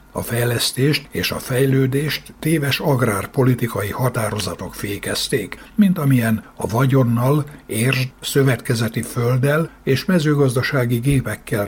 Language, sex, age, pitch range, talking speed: Hungarian, male, 60-79, 110-140 Hz, 100 wpm